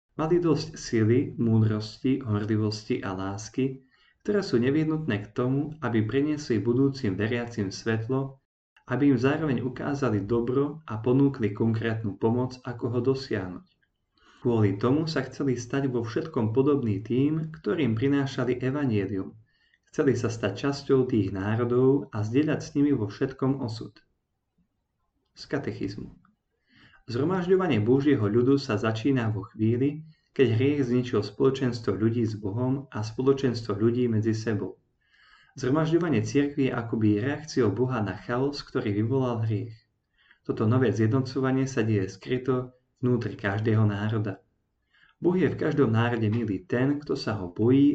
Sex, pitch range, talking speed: male, 110-135 Hz, 135 wpm